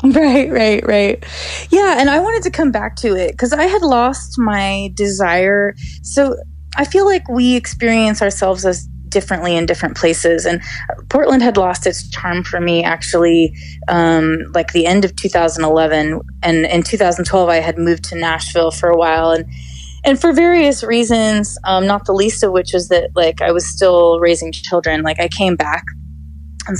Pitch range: 170-240 Hz